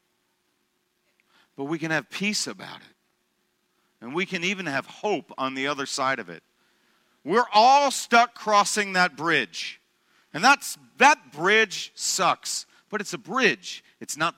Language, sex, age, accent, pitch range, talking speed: English, male, 40-59, American, 185-275 Hz, 150 wpm